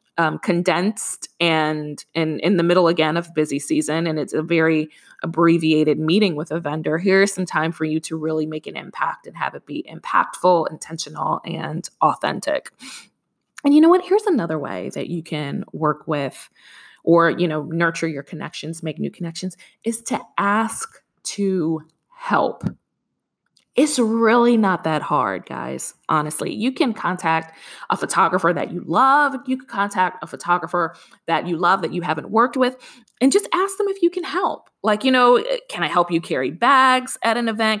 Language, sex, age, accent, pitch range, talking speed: English, female, 20-39, American, 165-255 Hz, 180 wpm